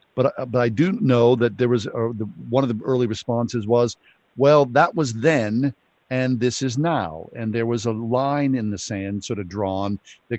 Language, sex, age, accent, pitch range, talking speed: English, male, 50-69, American, 105-130 Hz, 210 wpm